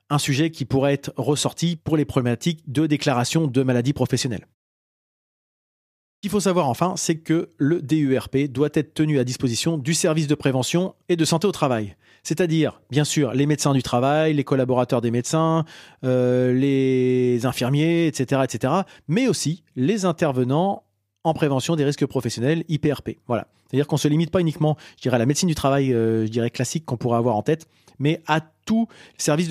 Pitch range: 130-165 Hz